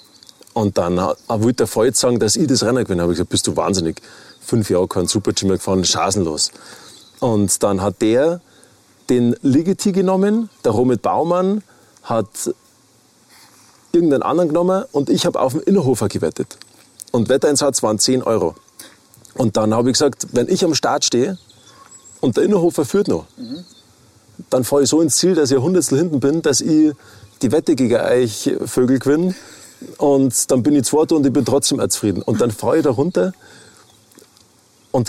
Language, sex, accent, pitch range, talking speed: German, male, German, 110-160 Hz, 175 wpm